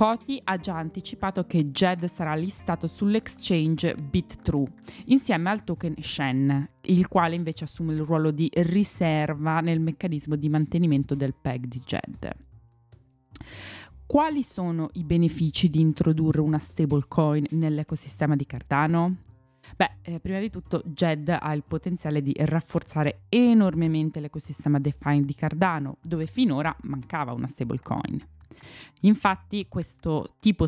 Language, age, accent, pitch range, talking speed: Italian, 20-39, native, 145-175 Hz, 125 wpm